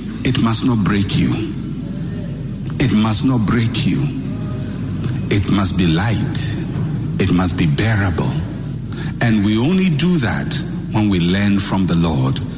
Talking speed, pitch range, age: 140 wpm, 120-170 Hz, 60-79